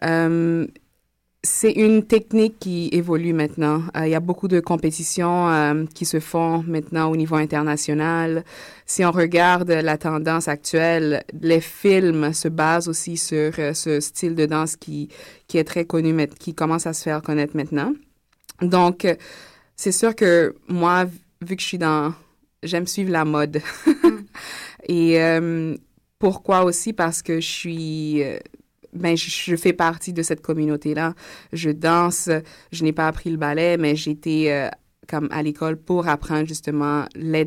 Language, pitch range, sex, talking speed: French, 155-175 Hz, female, 160 wpm